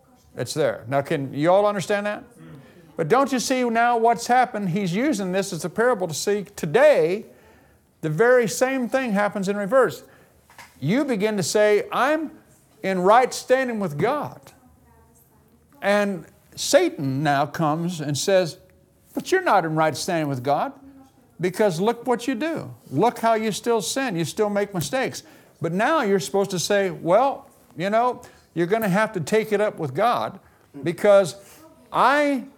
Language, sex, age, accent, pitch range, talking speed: English, male, 50-69, American, 185-245 Hz, 165 wpm